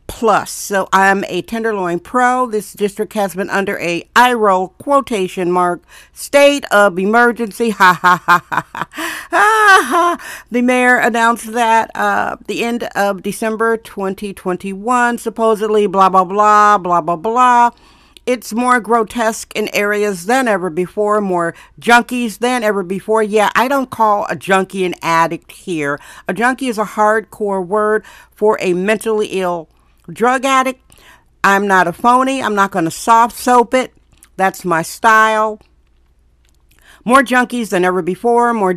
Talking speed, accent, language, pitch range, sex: 150 wpm, American, English, 190-235 Hz, female